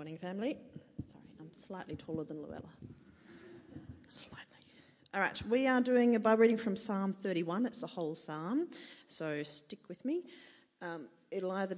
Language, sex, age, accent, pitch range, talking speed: English, female, 40-59, Australian, 155-200 Hz, 165 wpm